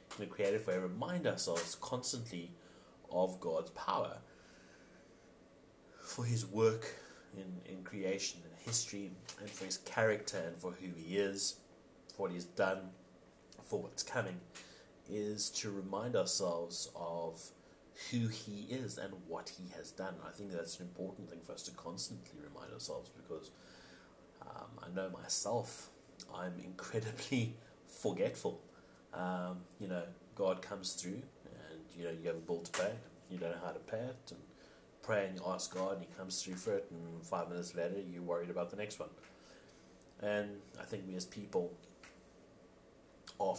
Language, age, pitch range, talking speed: English, 30-49, 90-105 Hz, 165 wpm